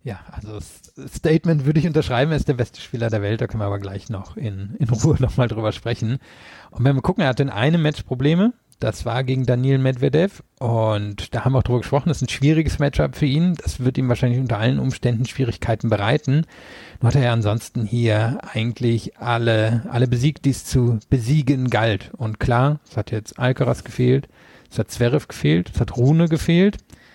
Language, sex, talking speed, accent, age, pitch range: German, male, 210 wpm, German, 40-59, 110-135 Hz